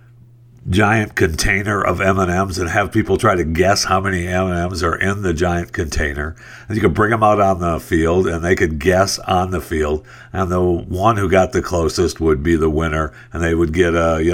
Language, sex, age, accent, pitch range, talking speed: English, male, 60-79, American, 85-120 Hz, 230 wpm